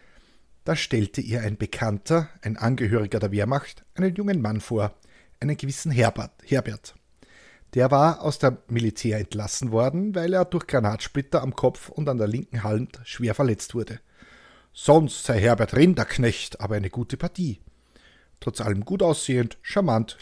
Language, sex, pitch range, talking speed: German, male, 110-145 Hz, 150 wpm